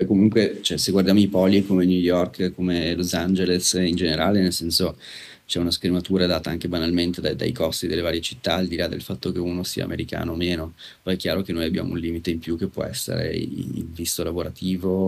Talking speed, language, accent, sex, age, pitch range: 215 wpm, Italian, native, male, 30-49, 85-95 Hz